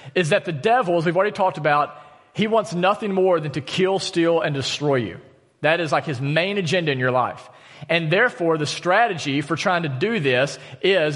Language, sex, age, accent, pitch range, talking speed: English, male, 40-59, American, 130-180 Hz, 210 wpm